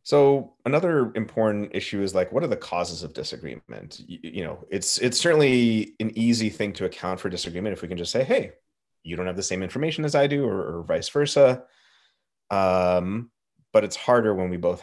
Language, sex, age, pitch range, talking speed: English, male, 30-49, 85-105 Hz, 205 wpm